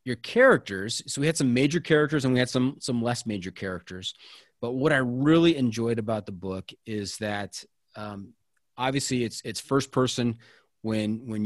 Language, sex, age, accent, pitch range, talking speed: English, male, 30-49, American, 115-145 Hz, 185 wpm